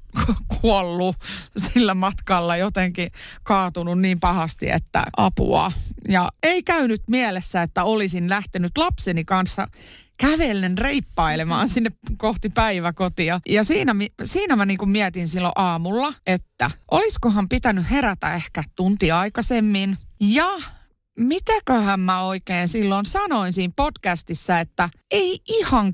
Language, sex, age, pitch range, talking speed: Finnish, female, 30-49, 180-245 Hz, 115 wpm